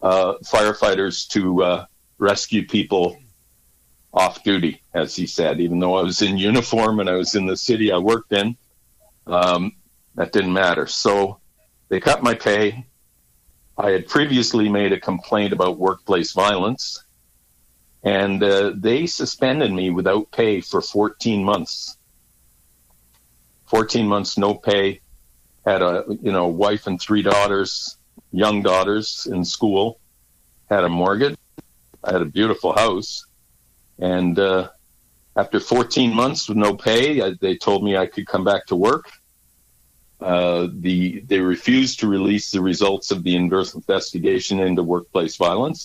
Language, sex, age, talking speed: English, male, 50-69, 145 wpm